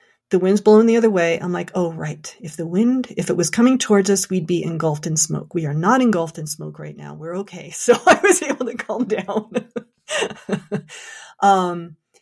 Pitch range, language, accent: 170-215 Hz, English, American